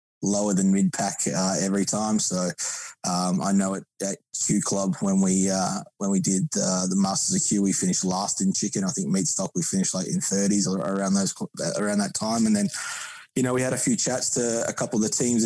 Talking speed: 235 wpm